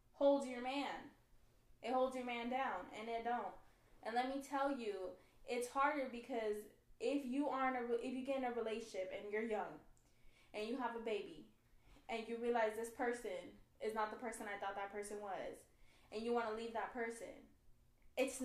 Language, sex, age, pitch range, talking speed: English, female, 10-29, 220-290 Hz, 190 wpm